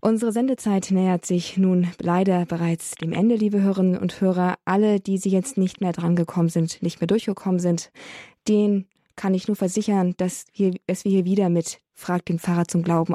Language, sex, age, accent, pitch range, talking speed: German, female, 20-39, German, 175-205 Hz, 195 wpm